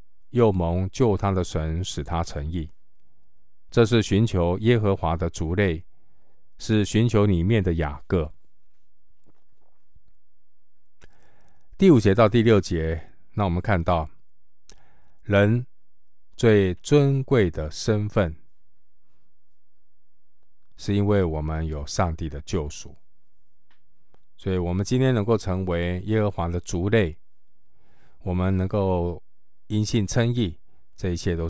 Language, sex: Chinese, male